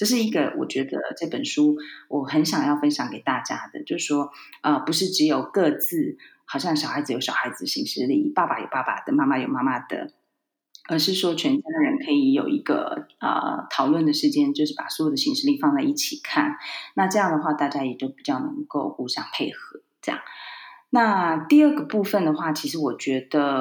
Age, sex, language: 30-49, female, Chinese